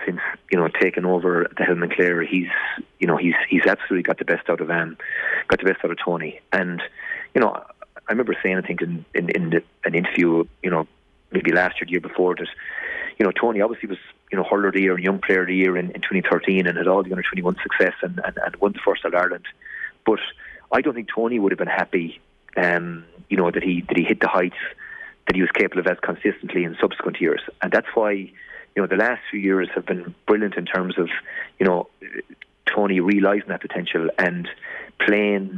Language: English